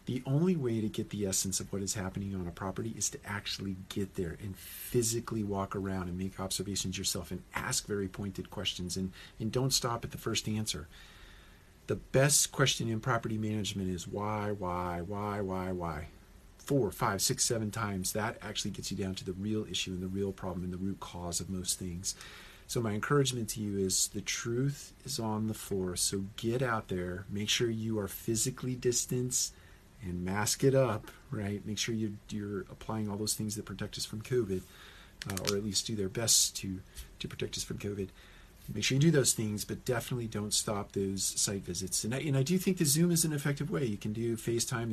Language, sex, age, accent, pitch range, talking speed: English, male, 40-59, American, 95-115 Hz, 210 wpm